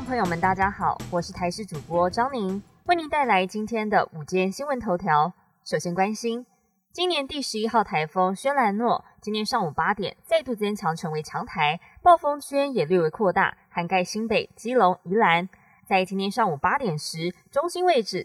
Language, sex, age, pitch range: Chinese, female, 20-39, 175-240 Hz